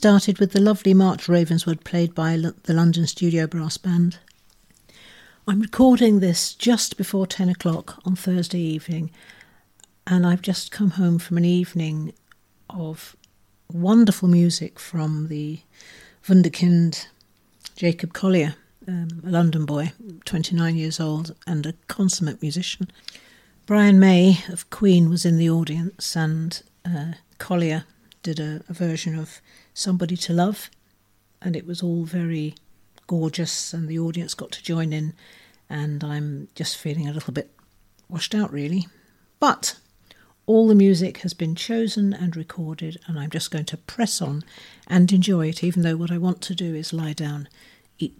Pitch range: 160-185 Hz